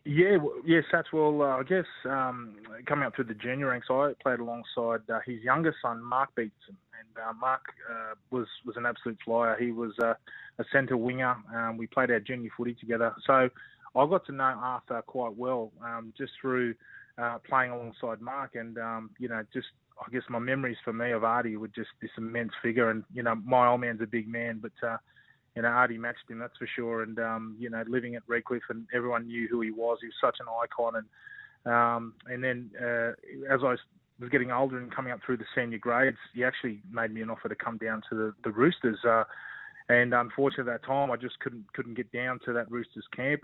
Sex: male